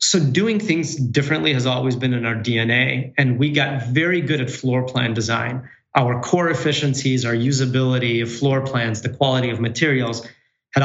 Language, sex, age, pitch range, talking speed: English, male, 30-49, 120-140 Hz, 175 wpm